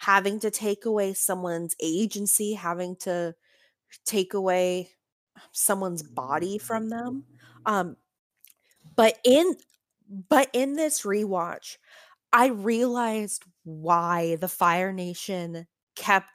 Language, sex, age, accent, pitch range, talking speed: English, female, 20-39, American, 170-210 Hz, 105 wpm